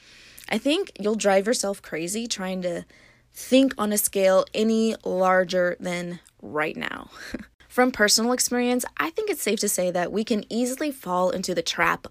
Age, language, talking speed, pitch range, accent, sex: 20-39, English, 170 wpm, 185-235 Hz, American, female